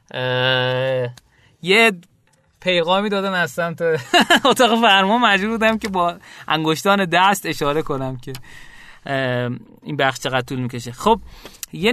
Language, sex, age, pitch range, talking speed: Persian, male, 30-49, 155-205 Hz, 115 wpm